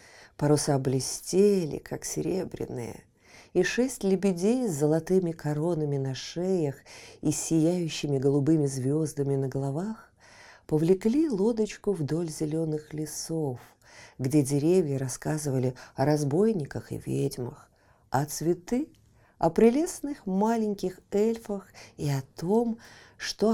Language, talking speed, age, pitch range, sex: Russian, 100 wpm, 50-69, 135-195 Hz, female